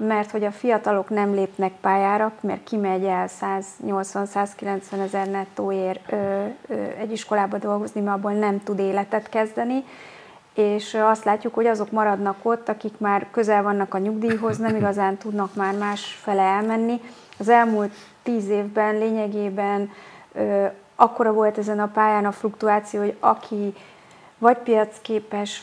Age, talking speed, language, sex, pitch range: 30-49, 140 wpm, Hungarian, female, 200-225 Hz